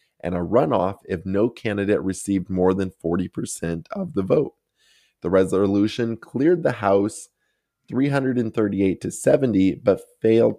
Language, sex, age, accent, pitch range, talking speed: English, male, 20-39, American, 95-120 Hz, 135 wpm